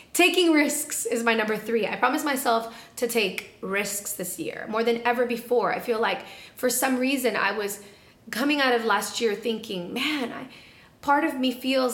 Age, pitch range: 30-49, 205-250 Hz